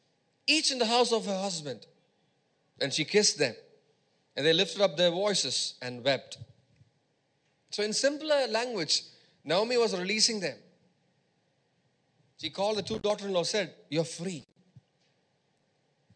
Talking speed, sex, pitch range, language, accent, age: 135 wpm, male, 160-220 Hz, English, Indian, 30-49